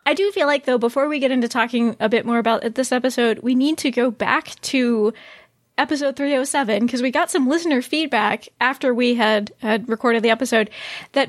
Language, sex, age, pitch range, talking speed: English, female, 20-39, 235-295 Hz, 200 wpm